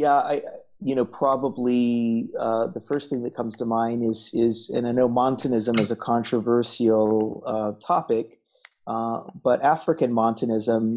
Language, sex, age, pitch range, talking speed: English, male, 30-49, 115-130 Hz, 155 wpm